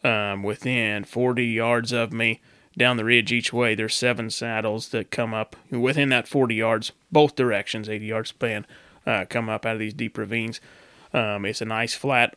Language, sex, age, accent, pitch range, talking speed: English, male, 30-49, American, 110-130 Hz, 190 wpm